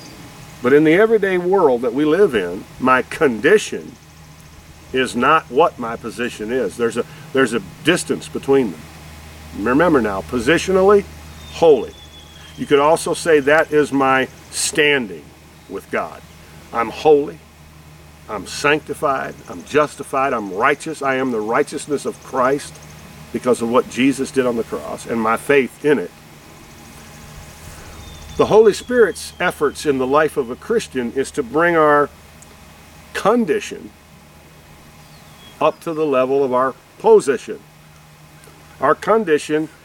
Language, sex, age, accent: English, male, 50-69, American